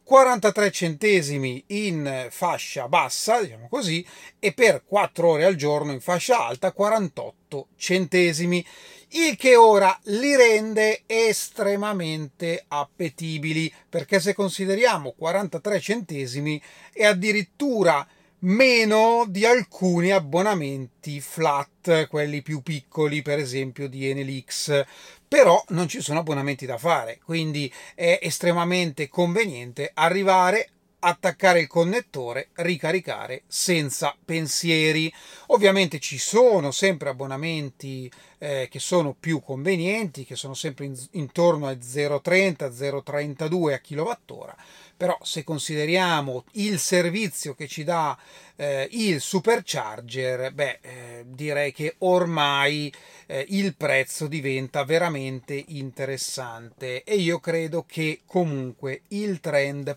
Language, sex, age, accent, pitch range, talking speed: Italian, male, 30-49, native, 140-190 Hz, 105 wpm